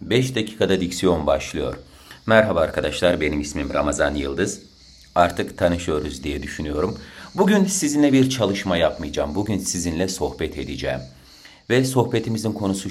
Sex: male